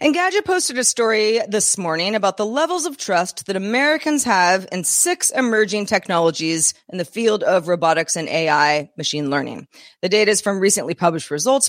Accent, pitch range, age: American, 170-220 Hz, 30-49